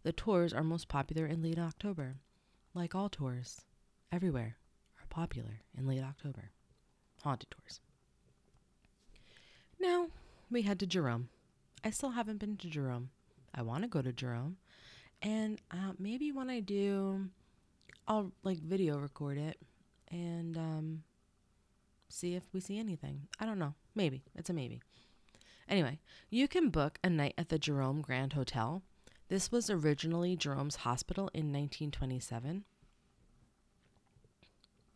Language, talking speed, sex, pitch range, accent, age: English, 135 wpm, female, 145-195 Hz, American, 30-49